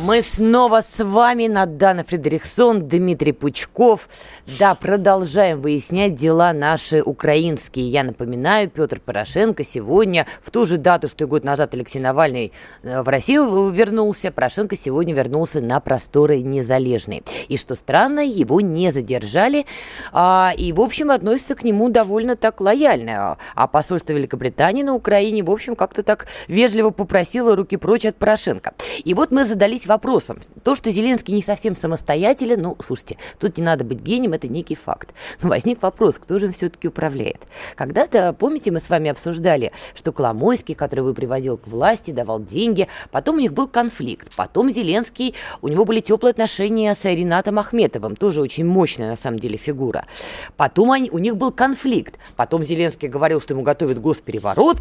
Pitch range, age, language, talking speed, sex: 155-230 Hz, 20-39, Russian, 160 wpm, female